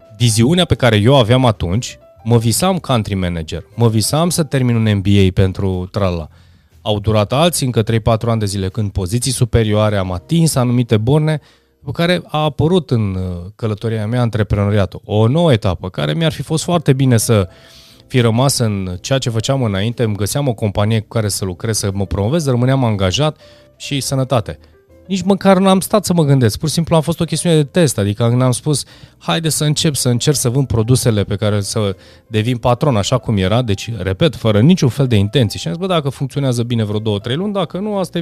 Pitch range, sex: 105-140 Hz, male